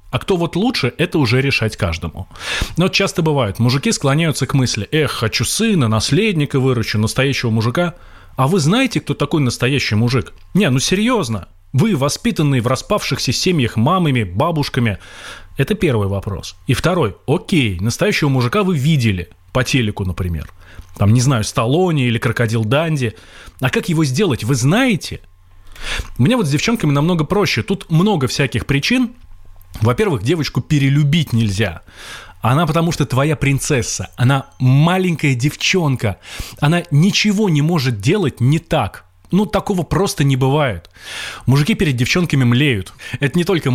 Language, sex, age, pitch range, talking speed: Russian, male, 20-39, 115-160 Hz, 145 wpm